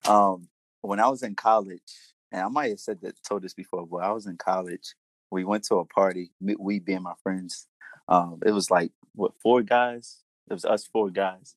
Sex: male